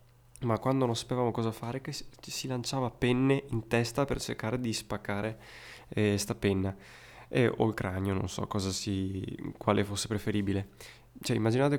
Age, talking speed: 20-39, 165 wpm